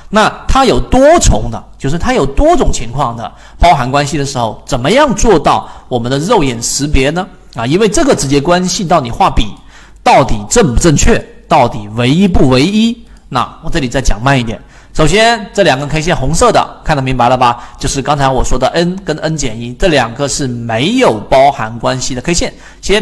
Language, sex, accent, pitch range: Chinese, male, native, 130-200 Hz